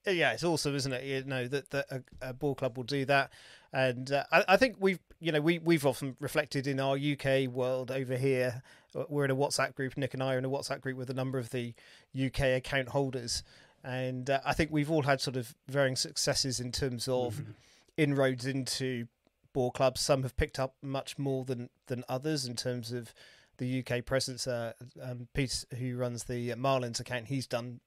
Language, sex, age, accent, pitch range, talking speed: English, male, 30-49, British, 125-145 Hz, 215 wpm